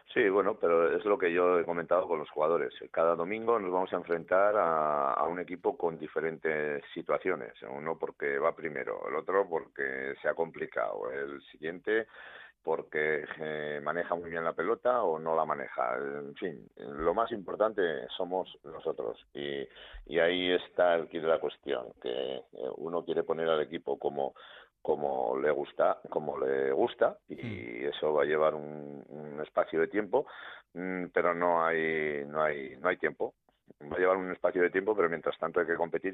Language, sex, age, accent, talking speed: Spanish, male, 50-69, Spanish, 180 wpm